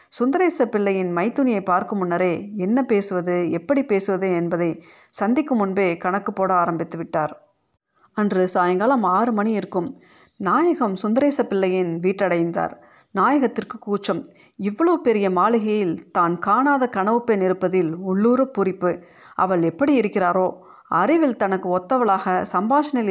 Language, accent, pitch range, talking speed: Tamil, native, 180-230 Hz, 105 wpm